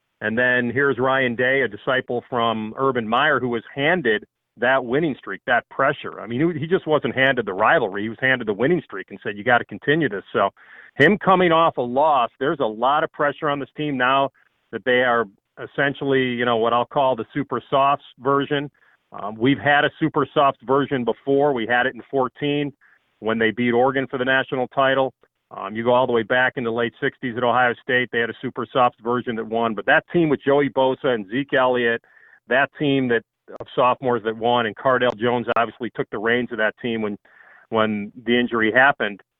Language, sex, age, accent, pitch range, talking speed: English, male, 40-59, American, 115-140 Hz, 215 wpm